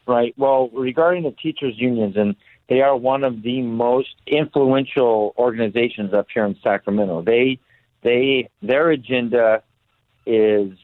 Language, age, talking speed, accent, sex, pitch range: English, 50-69, 135 wpm, American, male, 105-130 Hz